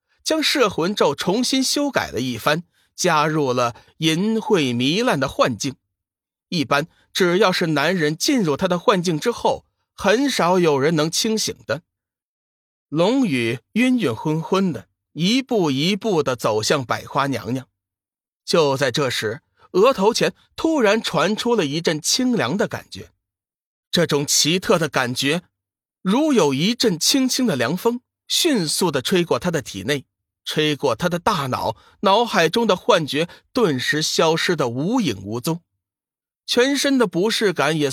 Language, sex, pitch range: Chinese, male, 135-220 Hz